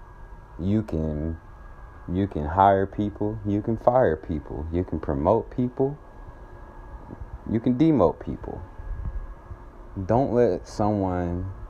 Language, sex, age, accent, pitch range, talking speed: English, male, 30-49, American, 80-95 Hz, 110 wpm